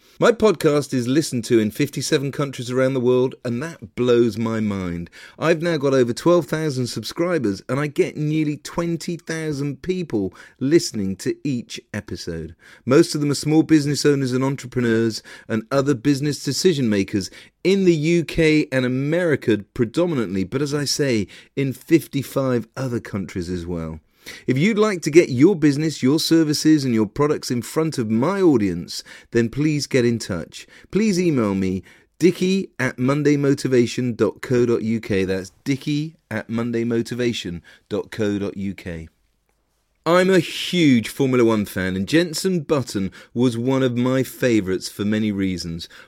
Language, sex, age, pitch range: English, male, 40-59, 105-145 Hz